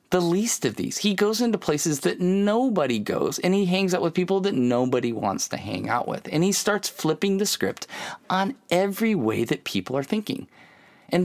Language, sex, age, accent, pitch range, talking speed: English, male, 30-49, American, 145-210 Hz, 205 wpm